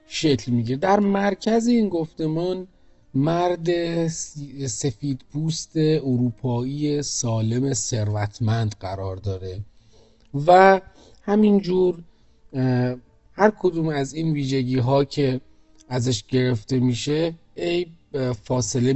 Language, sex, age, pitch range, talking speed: Persian, male, 40-59, 120-155 Hz, 90 wpm